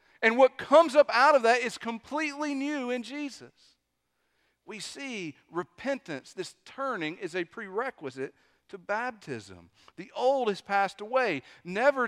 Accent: American